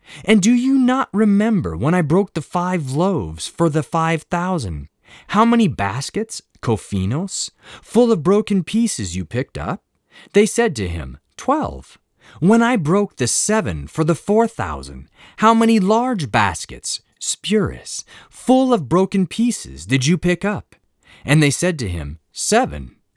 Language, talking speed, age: English, 155 wpm, 30-49